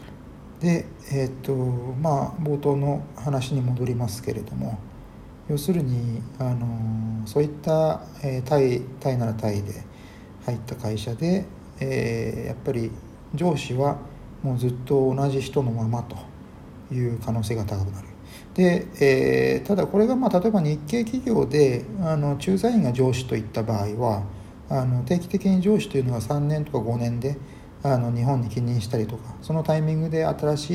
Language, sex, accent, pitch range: Japanese, male, native, 115-150 Hz